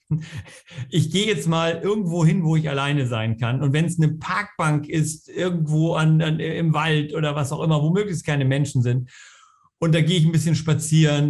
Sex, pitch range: male, 145-170 Hz